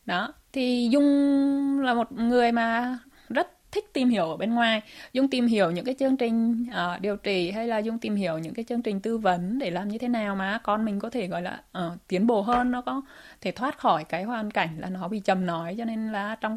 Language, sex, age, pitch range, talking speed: Vietnamese, female, 20-39, 200-250 Hz, 245 wpm